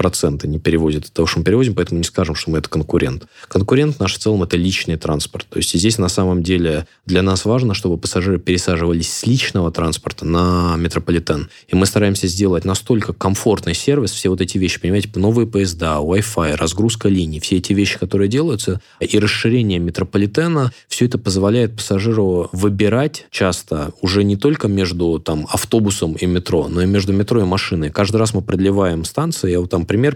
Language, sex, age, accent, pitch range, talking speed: Russian, male, 20-39, native, 90-110 Hz, 185 wpm